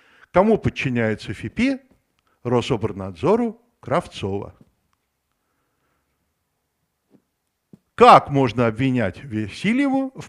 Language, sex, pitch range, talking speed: Russian, male, 120-175 Hz, 60 wpm